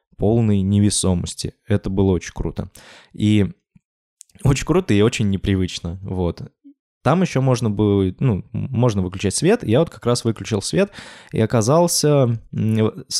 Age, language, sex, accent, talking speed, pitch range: 20-39, Russian, male, native, 135 wpm, 100-130 Hz